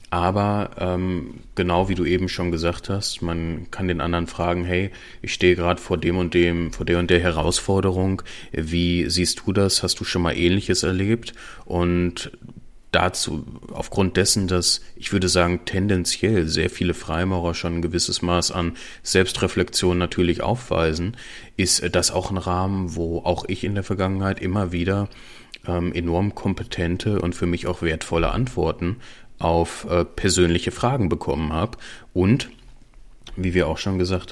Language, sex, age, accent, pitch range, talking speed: German, male, 30-49, German, 85-95 Hz, 160 wpm